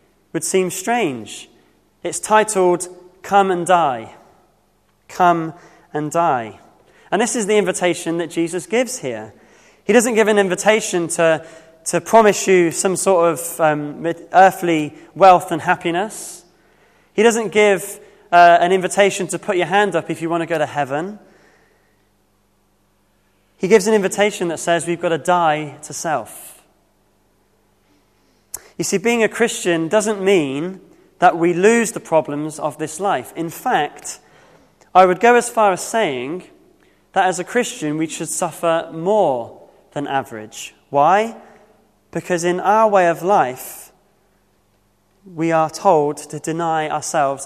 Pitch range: 155-200 Hz